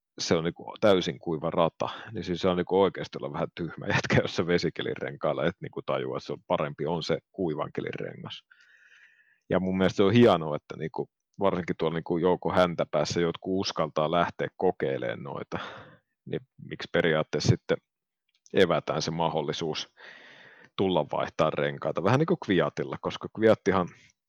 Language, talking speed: Finnish, 160 wpm